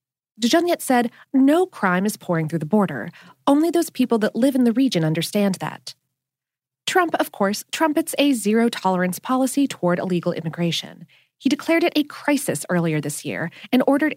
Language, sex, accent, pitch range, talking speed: English, female, American, 175-275 Hz, 165 wpm